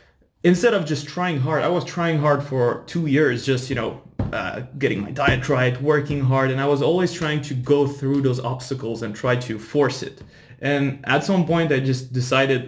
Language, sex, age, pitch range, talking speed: English, male, 20-39, 120-140 Hz, 210 wpm